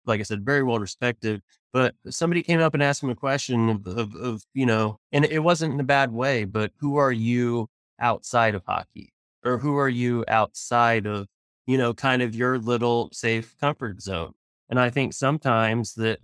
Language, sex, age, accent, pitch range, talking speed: English, male, 20-39, American, 110-125 Hz, 195 wpm